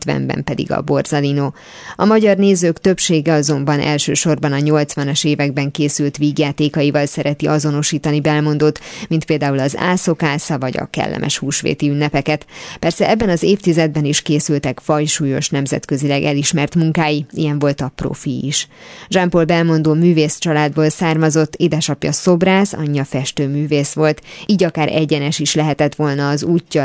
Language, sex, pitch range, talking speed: Hungarian, female, 145-165 Hz, 130 wpm